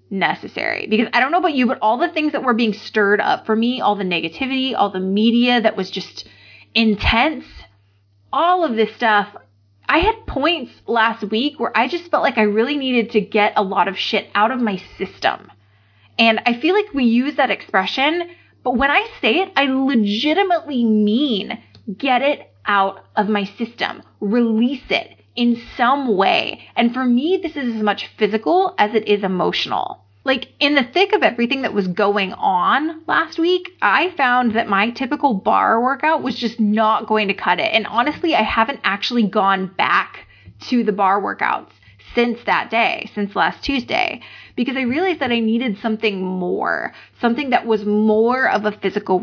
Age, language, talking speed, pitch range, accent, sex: 20-39, English, 185 wpm, 205-265 Hz, American, female